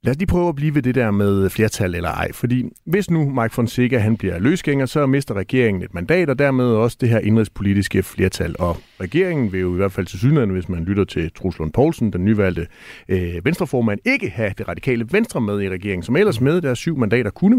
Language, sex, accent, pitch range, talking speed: Danish, male, native, 95-135 Hz, 225 wpm